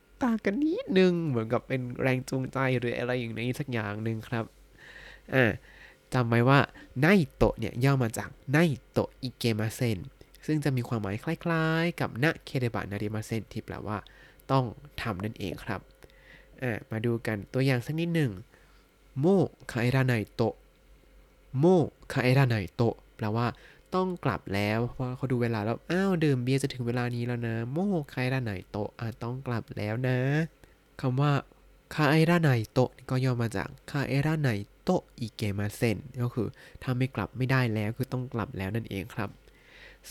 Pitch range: 110-135 Hz